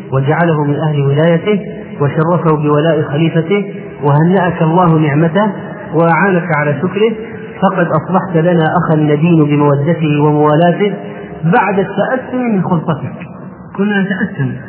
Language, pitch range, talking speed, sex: Arabic, 150-175 Hz, 105 wpm, male